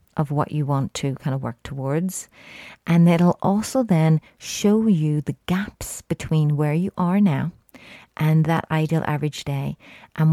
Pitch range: 145-180 Hz